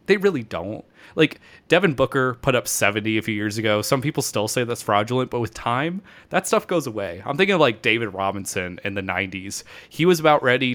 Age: 20-39